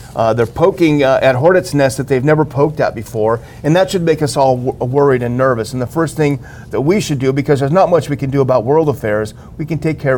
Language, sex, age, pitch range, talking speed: English, male, 40-59, 125-155 Hz, 260 wpm